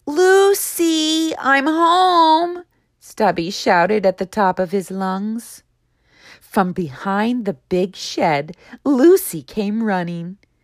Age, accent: 40-59, American